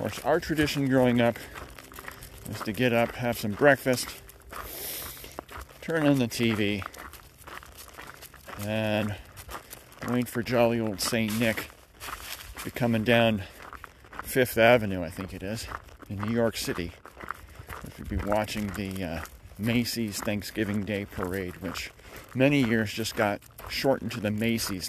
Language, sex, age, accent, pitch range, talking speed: English, male, 40-59, American, 95-115 Hz, 135 wpm